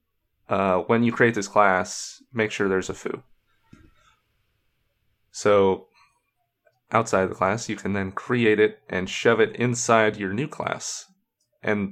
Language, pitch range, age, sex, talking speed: English, 100-120 Hz, 30-49, male, 145 wpm